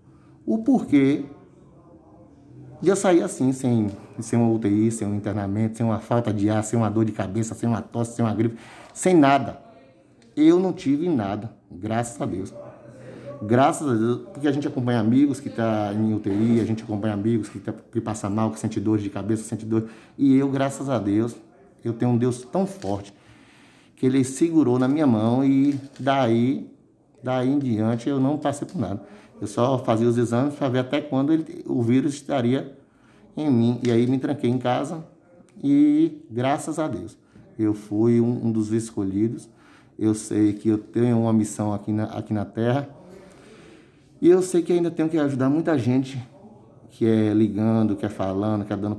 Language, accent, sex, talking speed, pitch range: Portuguese, Brazilian, male, 190 wpm, 105-135 Hz